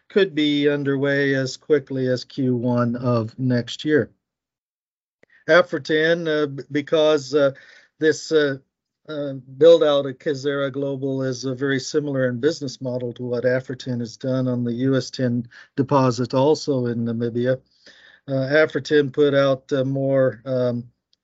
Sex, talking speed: male, 135 wpm